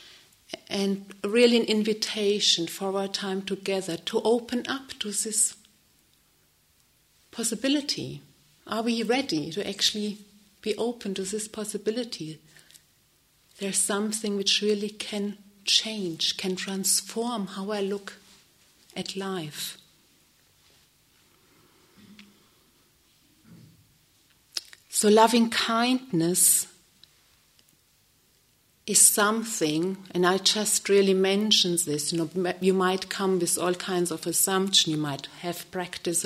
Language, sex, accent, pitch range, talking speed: English, female, German, 170-210 Hz, 105 wpm